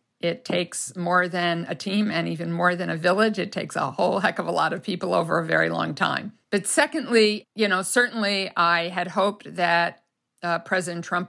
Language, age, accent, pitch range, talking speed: English, 50-69, American, 170-195 Hz, 205 wpm